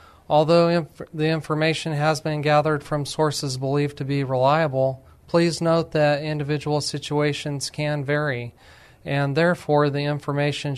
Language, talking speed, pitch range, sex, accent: English, 130 wpm, 135-150 Hz, male, American